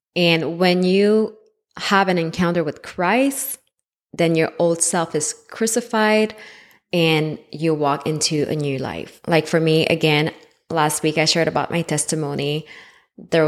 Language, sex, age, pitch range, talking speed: English, female, 20-39, 155-180 Hz, 145 wpm